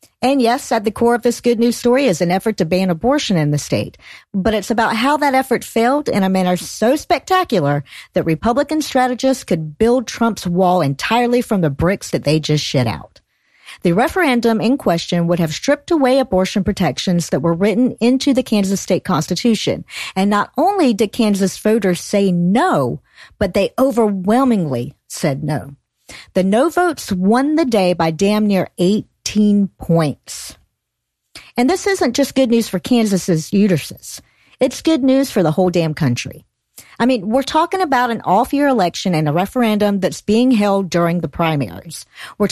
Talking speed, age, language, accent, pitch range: 175 wpm, 50-69, English, American, 180-250 Hz